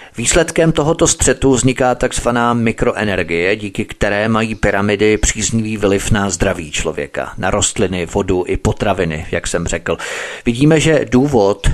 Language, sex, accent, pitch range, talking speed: Czech, male, native, 100-120 Hz, 135 wpm